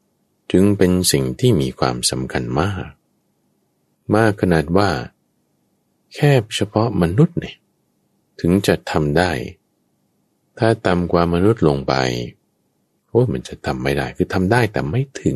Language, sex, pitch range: Thai, male, 70-95 Hz